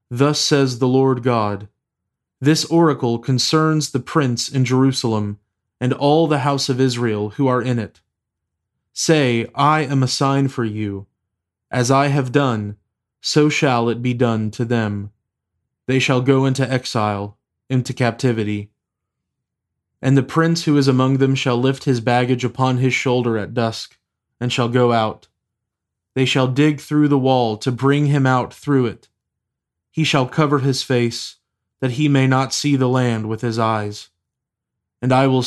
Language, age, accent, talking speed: English, 20-39, American, 165 wpm